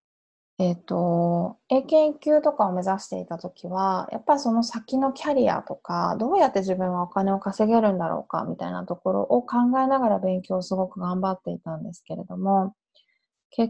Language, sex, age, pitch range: Japanese, female, 20-39, 180-245 Hz